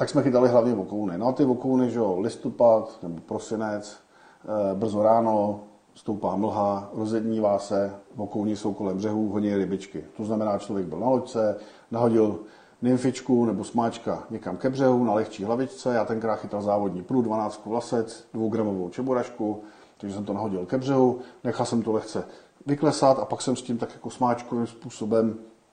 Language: Czech